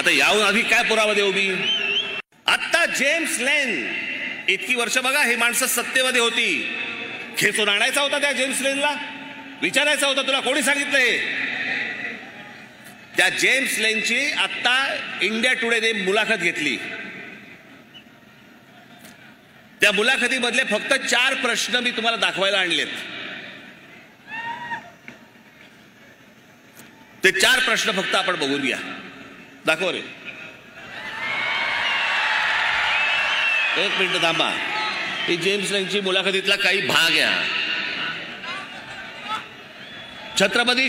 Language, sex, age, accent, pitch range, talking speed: Marathi, male, 40-59, native, 200-250 Hz, 50 wpm